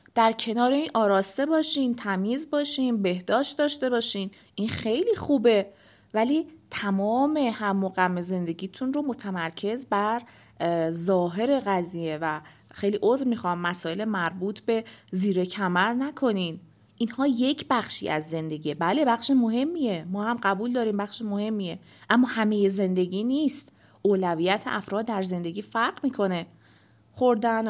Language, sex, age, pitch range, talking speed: Persian, female, 30-49, 185-240 Hz, 125 wpm